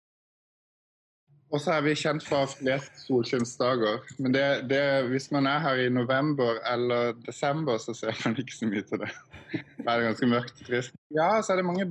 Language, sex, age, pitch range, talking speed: English, male, 20-39, 120-145 Hz, 175 wpm